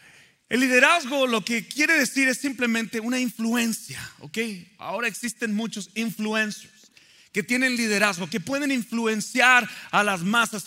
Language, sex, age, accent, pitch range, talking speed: Spanish, male, 40-59, Mexican, 195-255 Hz, 135 wpm